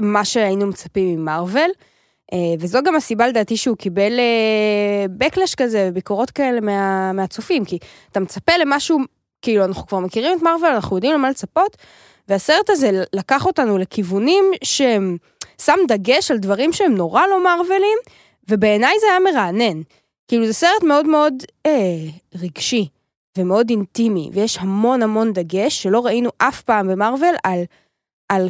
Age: 20-39